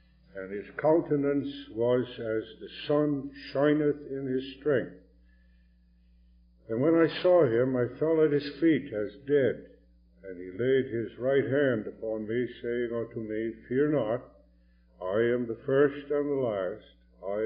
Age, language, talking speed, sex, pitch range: 60-79, English, 150 wpm, male, 95-135 Hz